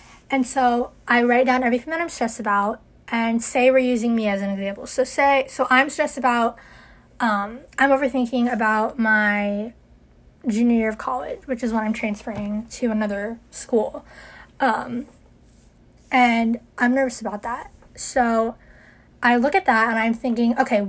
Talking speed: 160 wpm